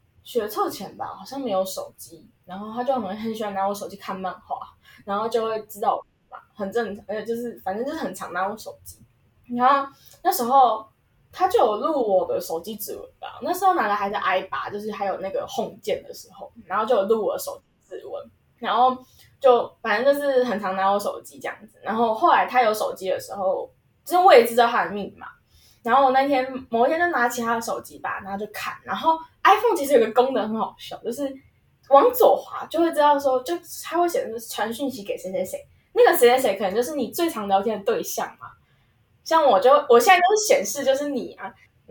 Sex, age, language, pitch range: female, 10-29, Chinese, 210-310 Hz